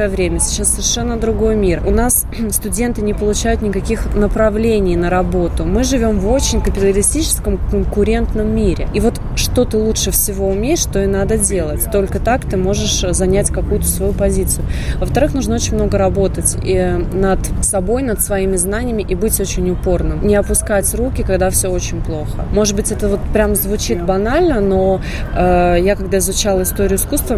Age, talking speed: 20-39, 165 wpm